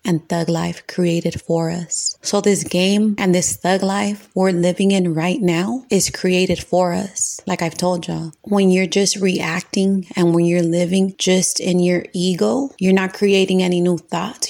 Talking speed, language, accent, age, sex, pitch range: 180 wpm, English, American, 30-49, female, 160-185 Hz